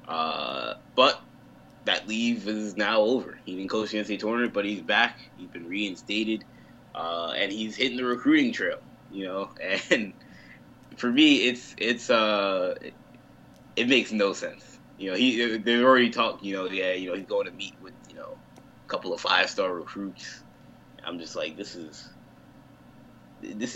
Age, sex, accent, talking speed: 20-39, male, American, 175 wpm